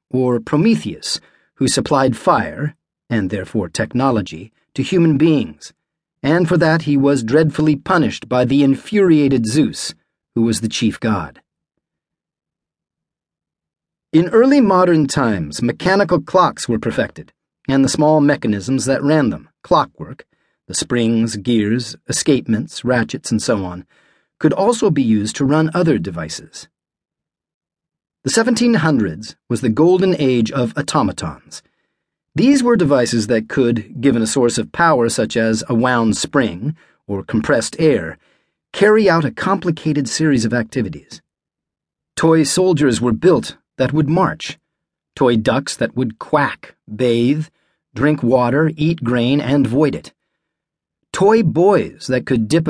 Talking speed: 135 wpm